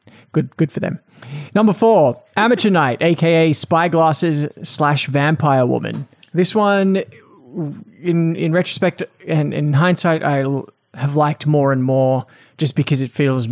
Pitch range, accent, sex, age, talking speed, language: 130-165 Hz, Australian, male, 20-39, 140 wpm, English